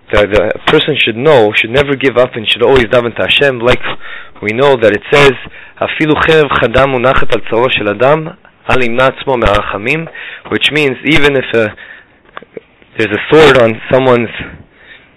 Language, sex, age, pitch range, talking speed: English, male, 20-39, 105-135 Hz, 140 wpm